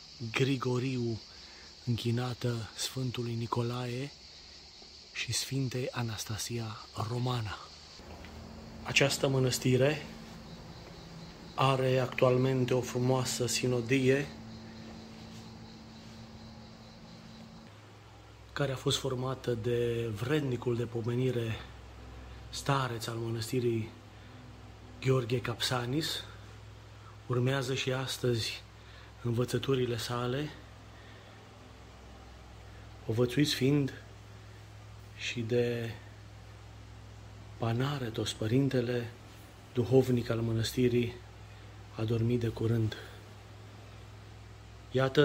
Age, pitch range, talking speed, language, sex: 30-49, 105-125 Hz, 65 wpm, Romanian, male